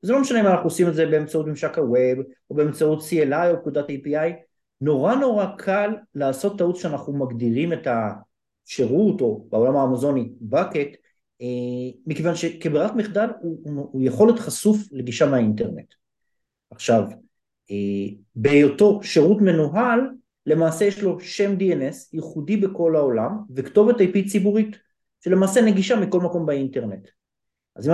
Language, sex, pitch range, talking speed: Hebrew, male, 130-190 Hz, 135 wpm